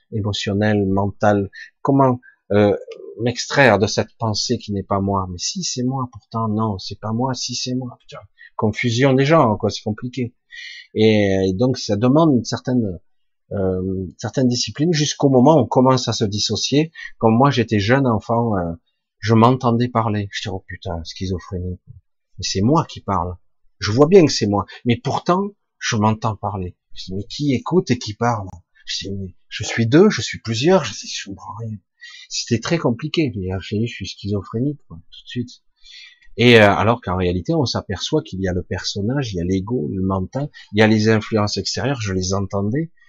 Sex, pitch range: male, 95-130 Hz